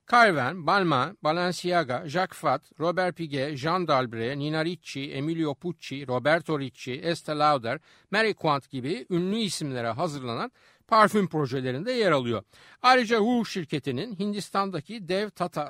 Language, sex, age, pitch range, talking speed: Turkish, male, 60-79, 130-215 Hz, 125 wpm